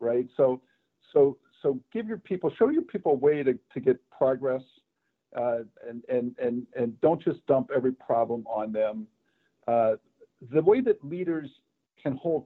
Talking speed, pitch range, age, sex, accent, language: 170 wpm, 125-175 Hz, 50-69, male, American, English